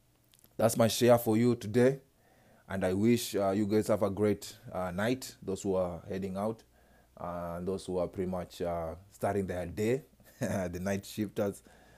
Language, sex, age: English, male, 20-39